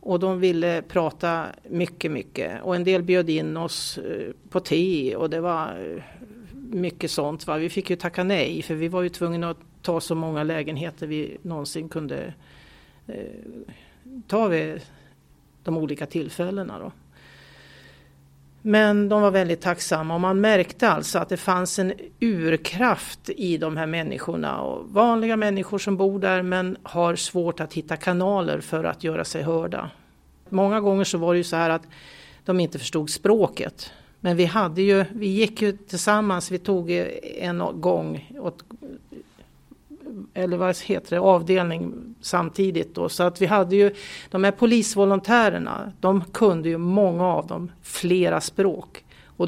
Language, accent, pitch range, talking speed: Swedish, native, 165-200 Hz, 155 wpm